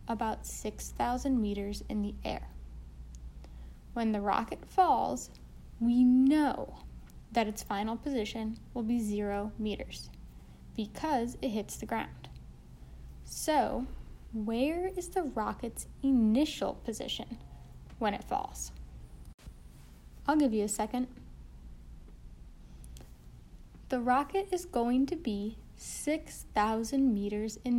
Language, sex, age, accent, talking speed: English, female, 10-29, American, 105 wpm